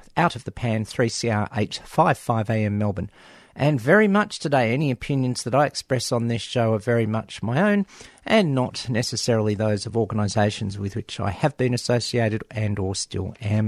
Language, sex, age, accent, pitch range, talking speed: English, male, 50-69, Australian, 105-140 Hz, 180 wpm